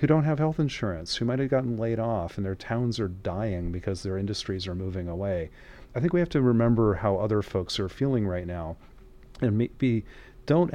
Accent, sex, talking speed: American, male, 205 wpm